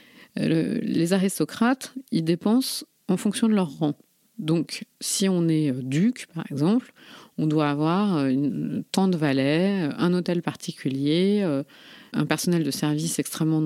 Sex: female